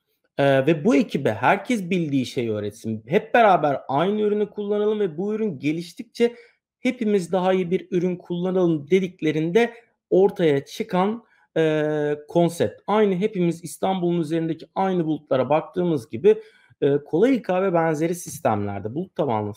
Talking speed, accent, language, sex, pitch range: 130 wpm, native, Turkish, male, 145-215 Hz